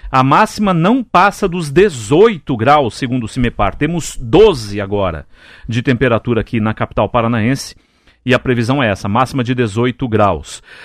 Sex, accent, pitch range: male, Brazilian, 120-175 Hz